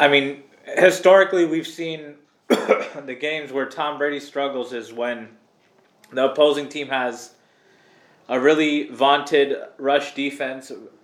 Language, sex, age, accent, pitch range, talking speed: English, male, 20-39, American, 120-140 Hz, 120 wpm